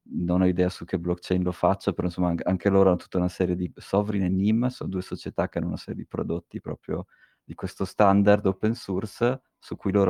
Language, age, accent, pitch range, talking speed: Italian, 30-49, native, 90-105 Hz, 225 wpm